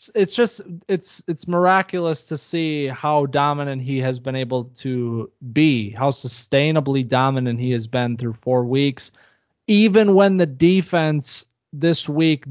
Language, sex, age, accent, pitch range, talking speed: English, male, 20-39, American, 125-155 Hz, 145 wpm